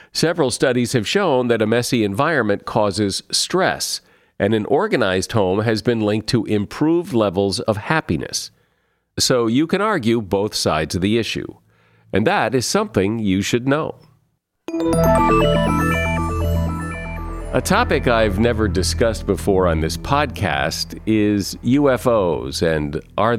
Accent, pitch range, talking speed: American, 95-125 Hz, 130 wpm